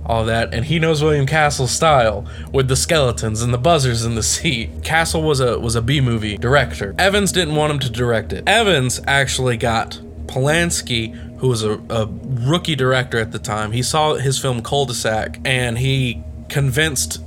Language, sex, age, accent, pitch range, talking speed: English, male, 20-39, American, 105-135 Hz, 175 wpm